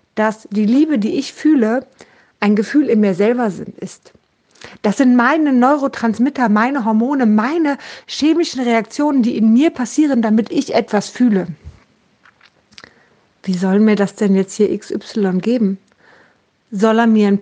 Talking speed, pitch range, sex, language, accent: 145 wpm, 210-270 Hz, female, German, German